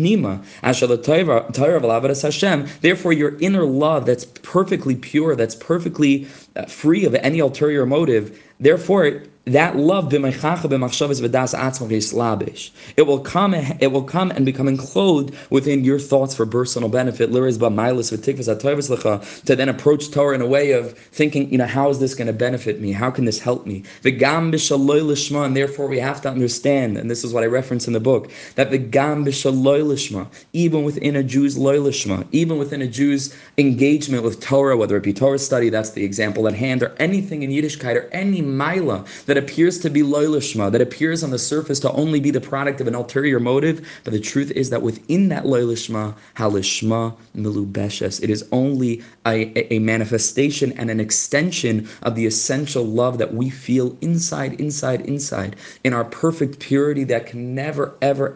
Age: 20-39